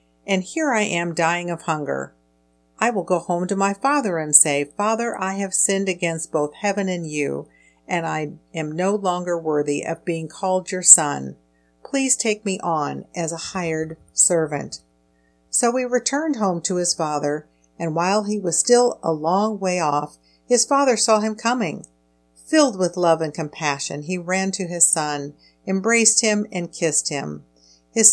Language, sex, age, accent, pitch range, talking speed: English, female, 50-69, American, 150-195 Hz, 175 wpm